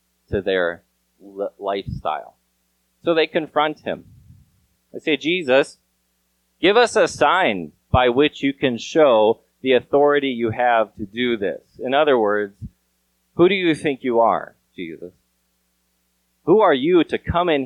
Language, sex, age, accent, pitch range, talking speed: English, male, 30-49, American, 90-145 Hz, 145 wpm